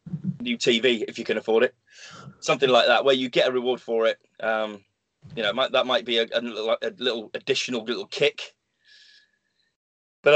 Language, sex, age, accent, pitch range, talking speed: English, male, 20-39, British, 110-175 Hz, 190 wpm